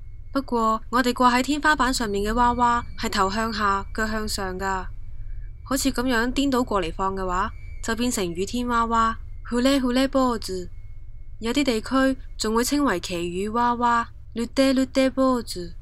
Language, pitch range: Chinese, 190-250 Hz